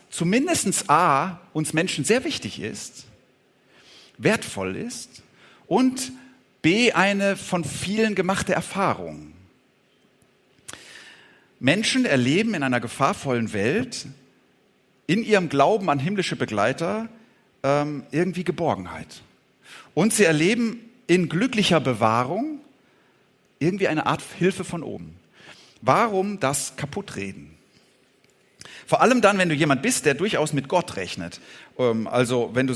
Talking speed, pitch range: 110 wpm, 130-195 Hz